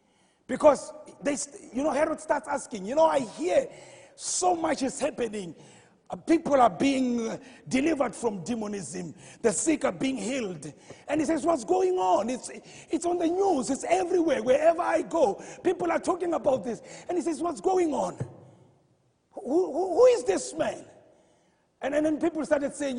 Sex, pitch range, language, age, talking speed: male, 245-325 Hz, English, 40-59, 175 wpm